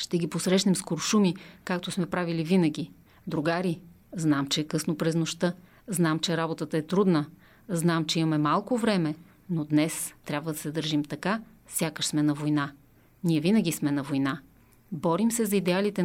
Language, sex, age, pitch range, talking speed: Bulgarian, female, 30-49, 155-200 Hz, 170 wpm